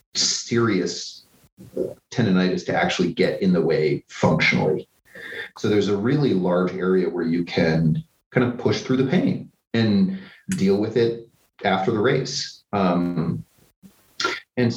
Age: 30-49